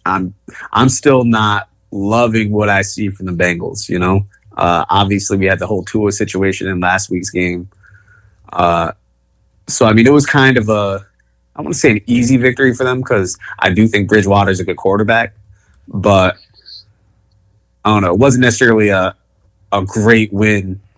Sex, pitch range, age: male, 95-110 Hz, 20-39